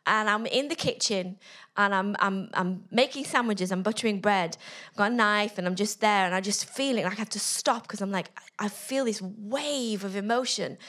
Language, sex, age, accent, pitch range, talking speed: English, female, 30-49, British, 205-275 Hz, 220 wpm